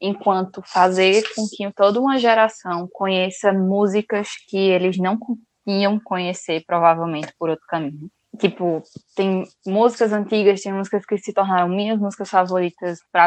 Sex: female